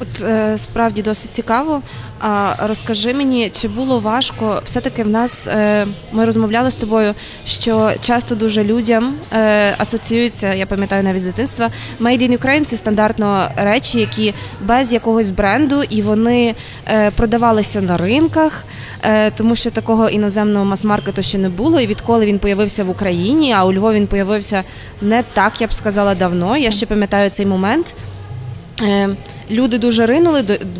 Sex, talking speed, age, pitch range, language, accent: female, 160 wpm, 20-39, 205-240 Hz, Ukrainian, native